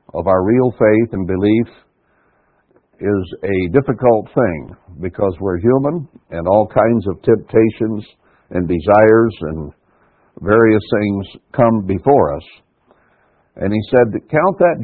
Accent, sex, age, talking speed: American, male, 60-79, 125 wpm